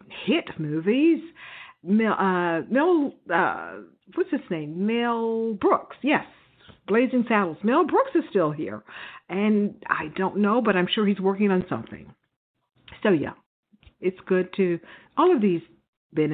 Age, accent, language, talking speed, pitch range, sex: 50-69, American, English, 145 wpm, 170-245 Hz, female